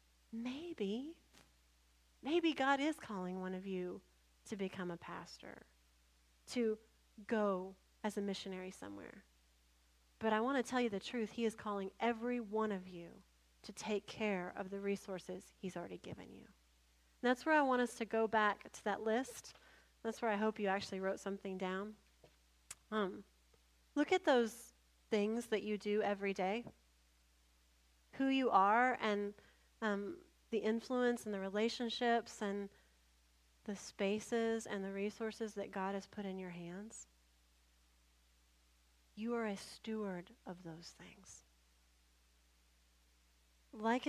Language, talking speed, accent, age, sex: English, 140 wpm, American, 30-49, female